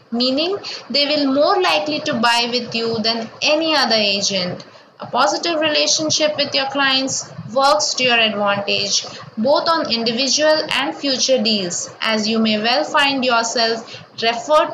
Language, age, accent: English, 20-39, Indian